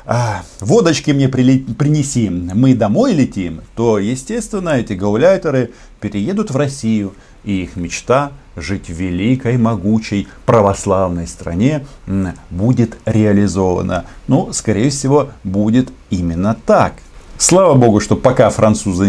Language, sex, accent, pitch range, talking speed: Russian, male, native, 95-130 Hz, 110 wpm